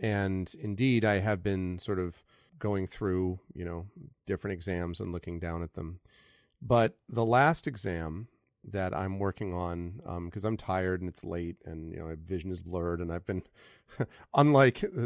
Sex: male